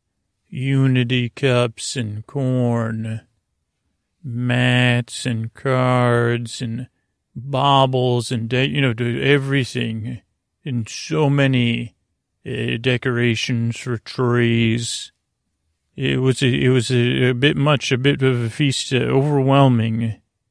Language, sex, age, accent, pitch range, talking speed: English, male, 40-59, American, 115-135 Hz, 95 wpm